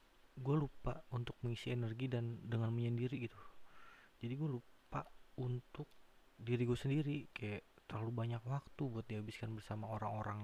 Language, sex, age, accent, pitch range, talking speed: Indonesian, male, 20-39, native, 105-125 Hz, 140 wpm